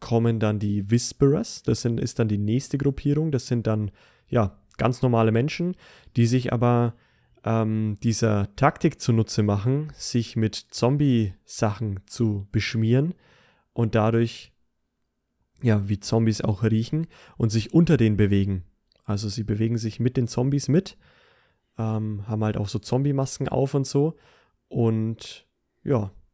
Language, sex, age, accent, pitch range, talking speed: German, male, 20-39, German, 110-130 Hz, 140 wpm